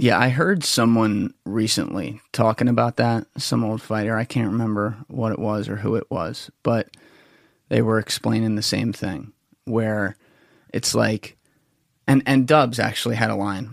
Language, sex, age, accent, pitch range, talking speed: English, male, 30-49, American, 110-120 Hz, 165 wpm